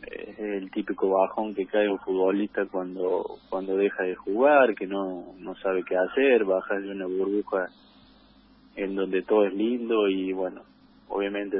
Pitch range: 95-120 Hz